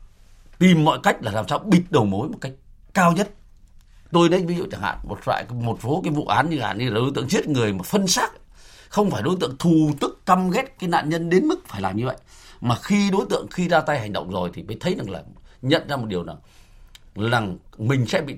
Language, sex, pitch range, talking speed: Vietnamese, male, 100-155 Hz, 250 wpm